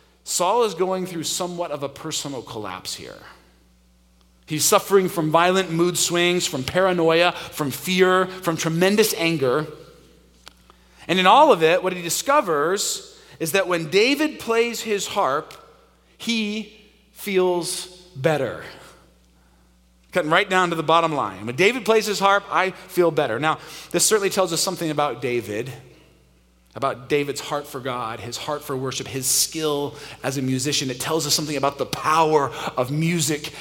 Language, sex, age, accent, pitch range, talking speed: English, male, 40-59, American, 130-180 Hz, 155 wpm